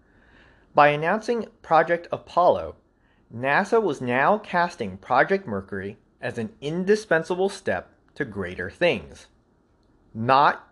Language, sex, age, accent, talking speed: English, male, 30-49, American, 100 wpm